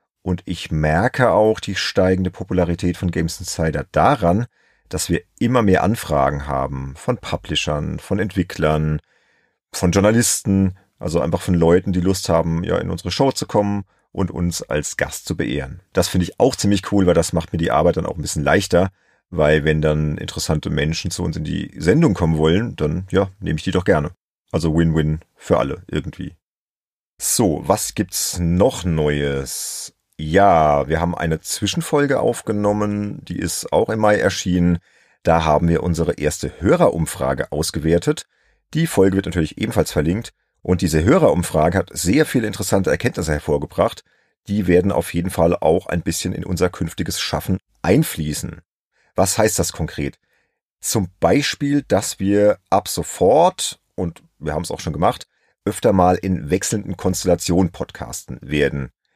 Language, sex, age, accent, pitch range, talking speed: German, male, 40-59, German, 80-100 Hz, 160 wpm